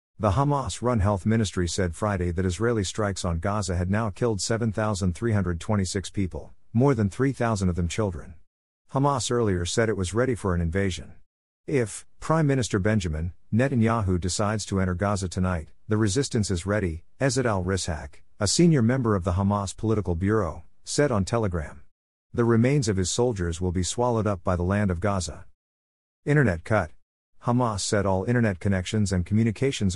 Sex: male